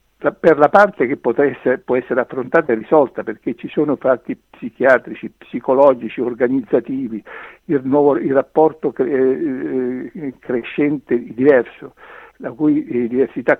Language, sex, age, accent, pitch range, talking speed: Italian, male, 60-79, native, 125-155 Hz, 105 wpm